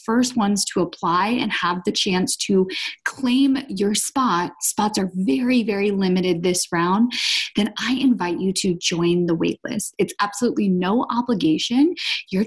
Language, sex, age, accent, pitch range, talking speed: English, female, 20-39, American, 180-245 Hz, 155 wpm